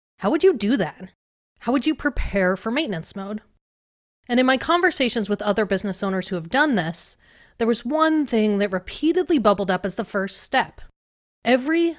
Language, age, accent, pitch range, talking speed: English, 30-49, American, 200-270 Hz, 185 wpm